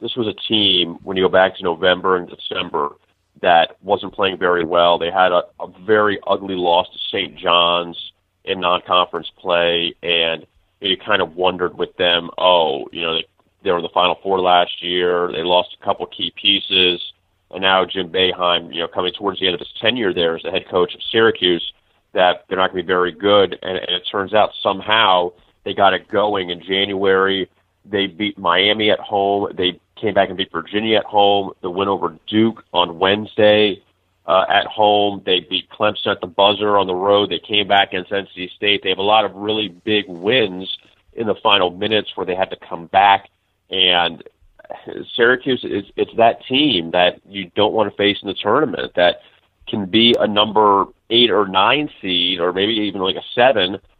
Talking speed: 200 wpm